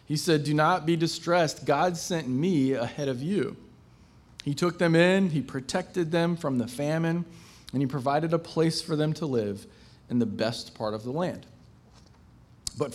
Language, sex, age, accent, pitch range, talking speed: English, male, 40-59, American, 120-170 Hz, 180 wpm